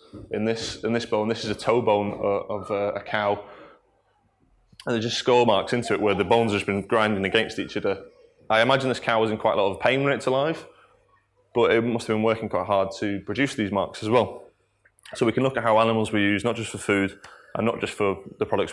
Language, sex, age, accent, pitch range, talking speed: English, male, 20-39, British, 100-120 Hz, 255 wpm